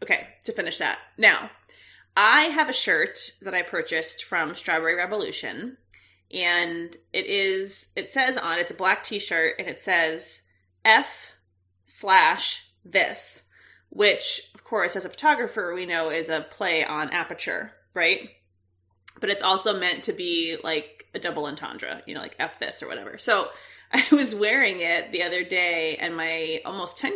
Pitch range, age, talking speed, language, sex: 160-240 Hz, 20-39, 165 wpm, English, female